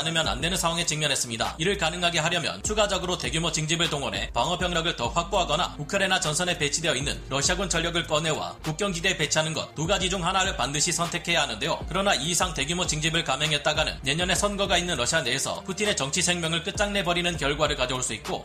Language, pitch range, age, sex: Korean, 150-185 Hz, 30-49, male